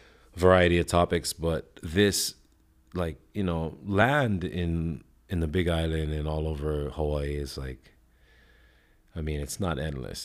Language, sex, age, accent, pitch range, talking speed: English, male, 30-49, American, 75-100 Hz, 145 wpm